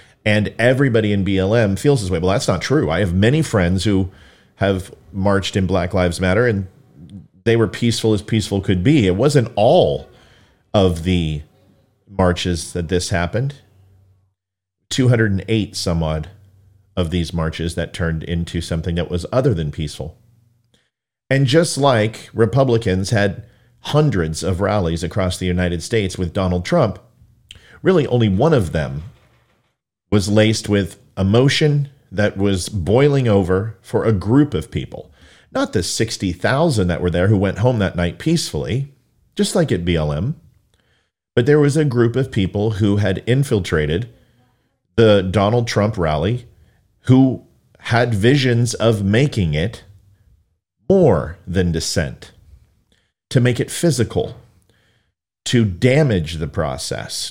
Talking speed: 140 wpm